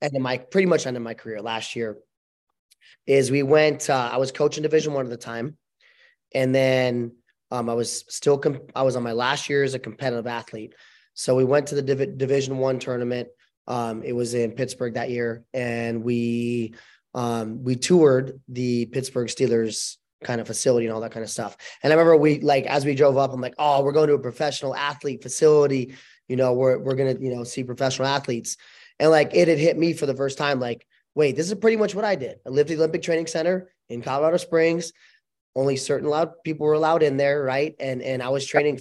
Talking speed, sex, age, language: 225 wpm, male, 20-39, English